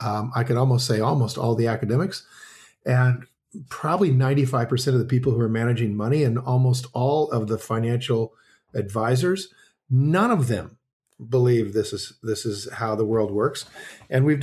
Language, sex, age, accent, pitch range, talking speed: English, male, 50-69, American, 110-140 Hz, 165 wpm